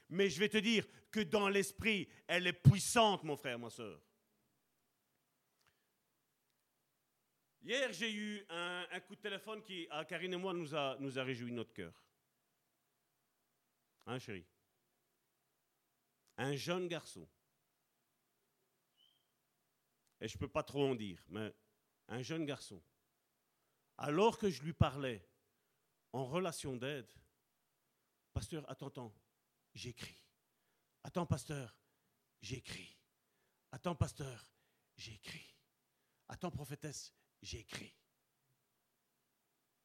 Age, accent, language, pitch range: 50-69, French, French, 115-175 Hz